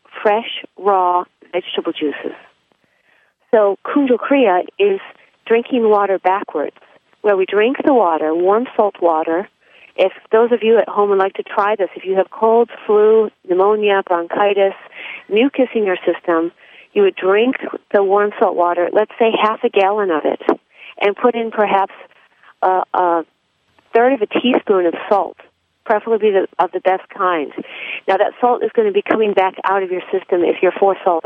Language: English